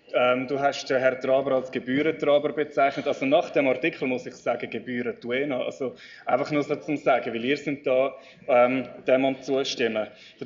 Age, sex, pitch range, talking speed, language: 20-39, male, 130-155 Hz, 195 wpm, German